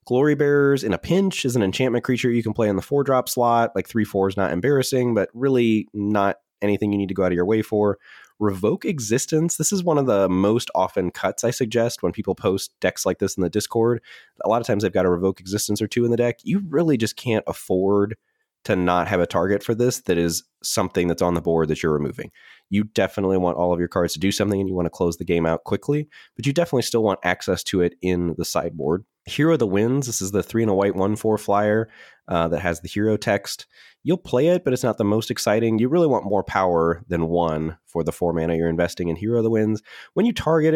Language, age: English, 20-39